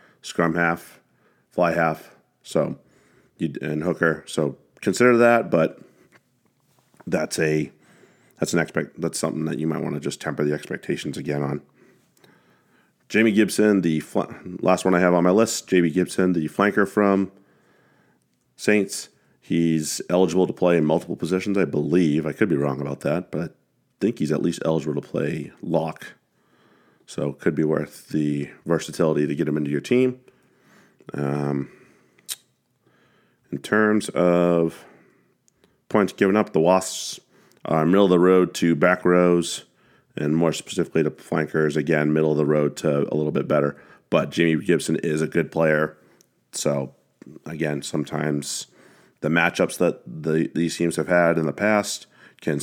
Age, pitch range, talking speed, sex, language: 40-59, 75-90 Hz, 160 wpm, male, English